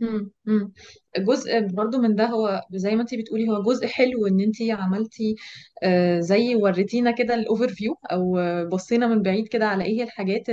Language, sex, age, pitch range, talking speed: Arabic, female, 20-39, 195-230 Hz, 165 wpm